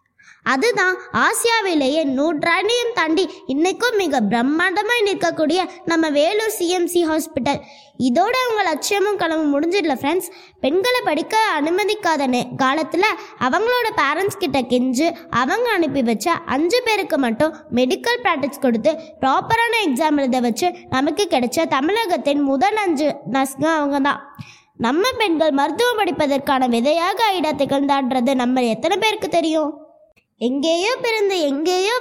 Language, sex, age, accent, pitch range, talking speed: Tamil, female, 20-39, native, 280-400 Hz, 110 wpm